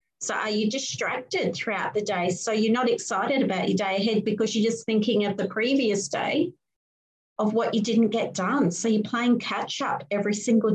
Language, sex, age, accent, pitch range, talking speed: English, female, 40-59, Australian, 185-235 Hz, 195 wpm